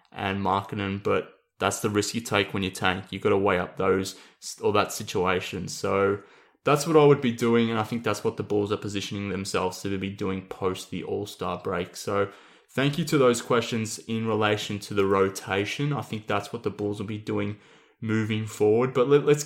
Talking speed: 210 wpm